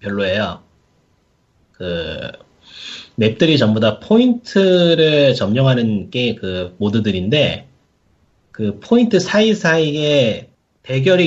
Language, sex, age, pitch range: Korean, male, 30-49, 105-160 Hz